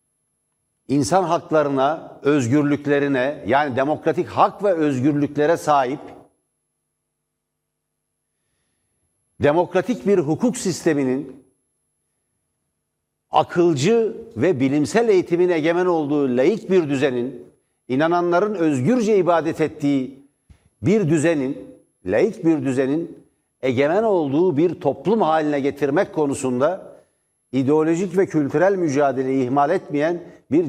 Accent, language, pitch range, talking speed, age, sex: native, Turkish, 130-170 Hz, 90 wpm, 60-79, male